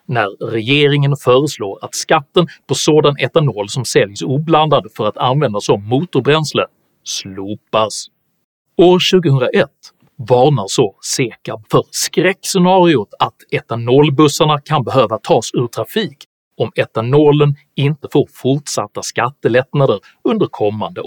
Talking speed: 110 wpm